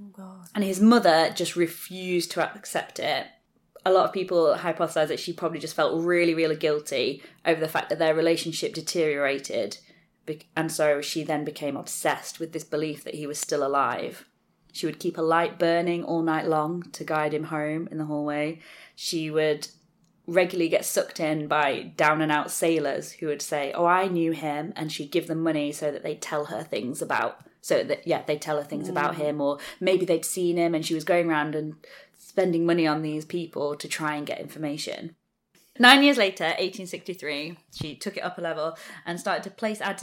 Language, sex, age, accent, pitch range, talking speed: English, female, 20-39, British, 155-180 Hz, 195 wpm